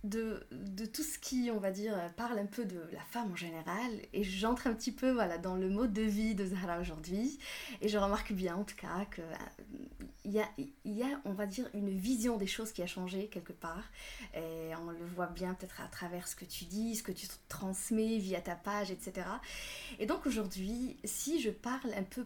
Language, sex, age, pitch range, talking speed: French, female, 20-39, 185-230 Hz, 220 wpm